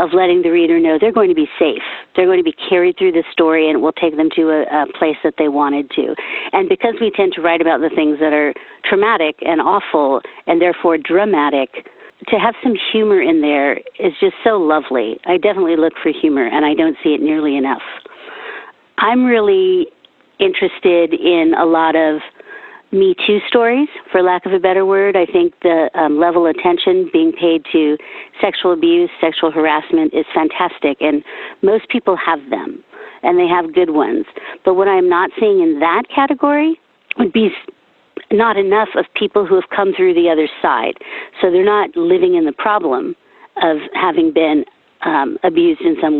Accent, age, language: American, 50-69, English